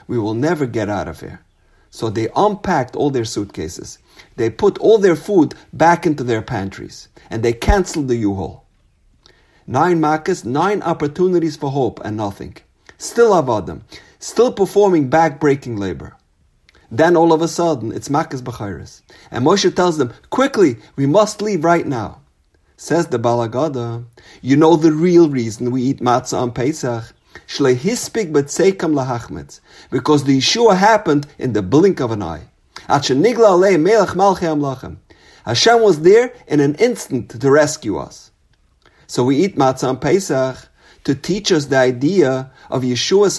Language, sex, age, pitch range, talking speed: English, male, 50-69, 120-180 Hz, 145 wpm